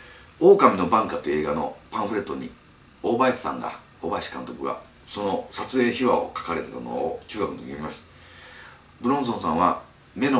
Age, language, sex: 40-59, Japanese, male